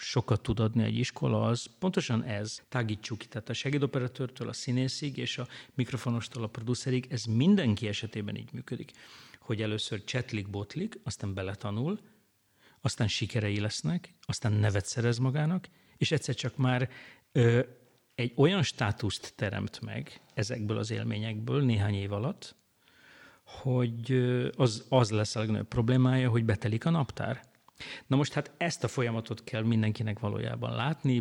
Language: Hungarian